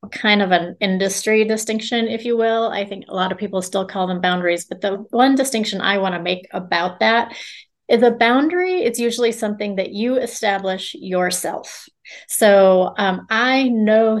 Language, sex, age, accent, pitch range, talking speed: English, female, 30-49, American, 185-220 Hz, 175 wpm